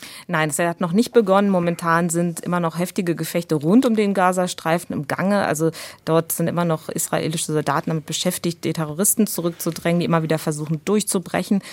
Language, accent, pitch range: German, German, 155-180 Hz